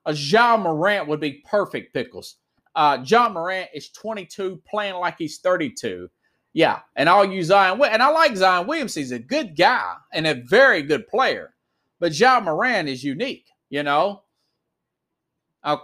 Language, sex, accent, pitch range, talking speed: English, male, American, 160-225 Hz, 165 wpm